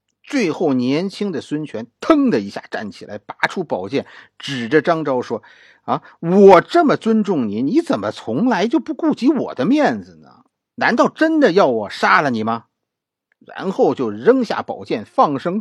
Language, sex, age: Chinese, male, 50-69